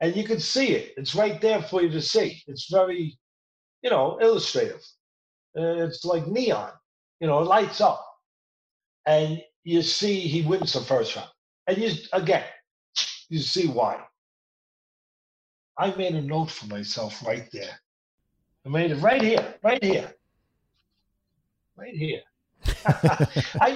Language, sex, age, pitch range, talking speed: English, male, 50-69, 125-180 Hz, 145 wpm